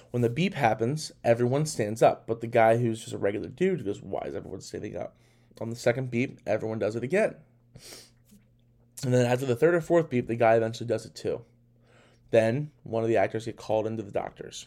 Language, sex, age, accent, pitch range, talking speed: English, male, 20-39, American, 115-135 Hz, 215 wpm